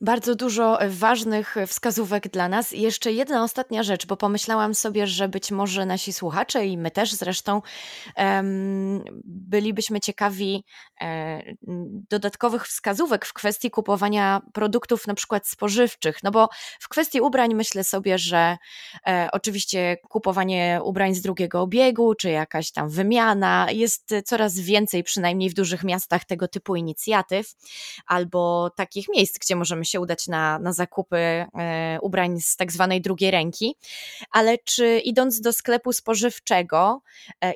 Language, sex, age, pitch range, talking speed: English, female, 20-39, 185-220 Hz, 140 wpm